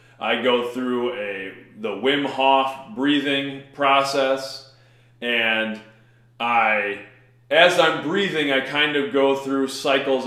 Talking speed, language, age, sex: 115 wpm, English, 30-49, male